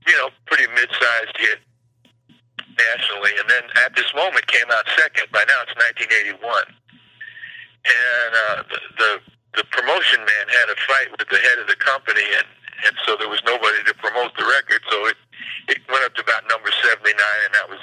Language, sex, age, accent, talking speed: English, male, 60-79, American, 190 wpm